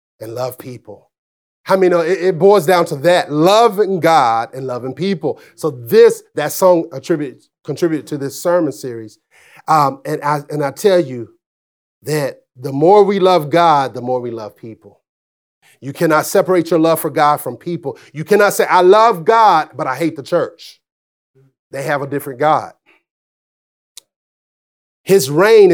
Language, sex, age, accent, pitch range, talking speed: English, male, 40-59, American, 130-180 Hz, 165 wpm